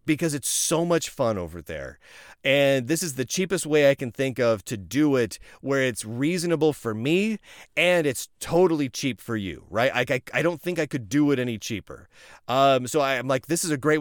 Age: 30-49